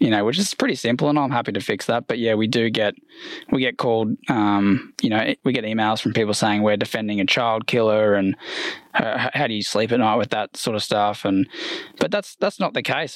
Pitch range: 110-145 Hz